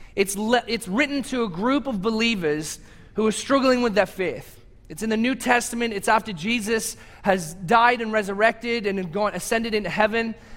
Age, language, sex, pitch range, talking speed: 30-49, English, male, 170-230 Hz, 175 wpm